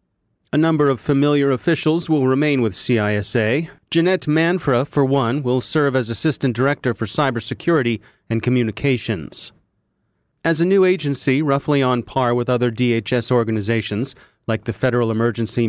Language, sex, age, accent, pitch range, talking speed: English, male, 30-49, American, 120-150 Hz, 140 wpm